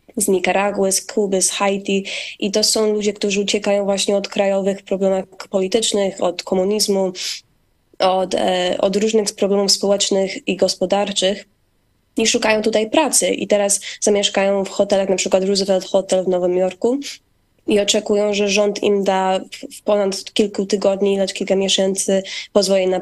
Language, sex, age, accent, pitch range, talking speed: Polish, female, 20-39, native, 190-210 Hz, 150 wpm